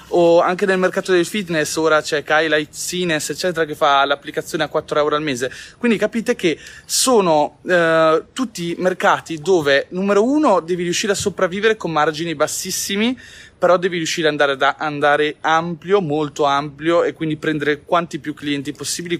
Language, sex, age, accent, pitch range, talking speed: Italian, male, 20-39, native, 140-180 Hz, 165 wpm